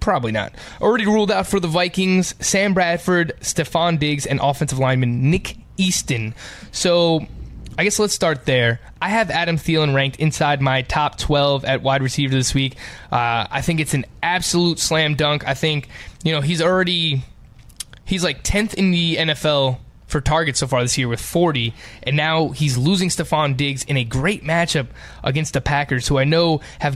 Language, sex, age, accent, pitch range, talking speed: English, male, 20-39, American, 135-165 Hz, 185 wpm